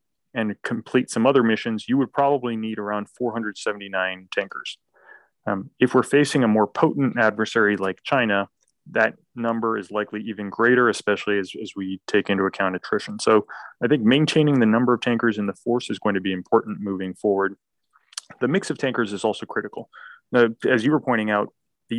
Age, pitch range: 20-39, 105-120 Hz